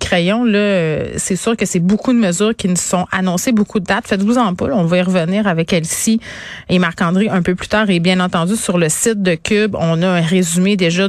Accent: Canadian